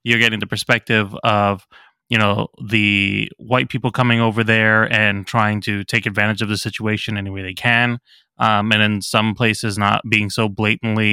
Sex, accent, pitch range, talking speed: male, American, 105-120 Hz, 185 wpm